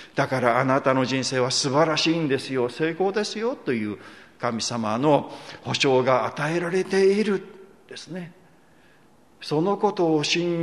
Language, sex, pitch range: Japanese, male, 125-190 Hz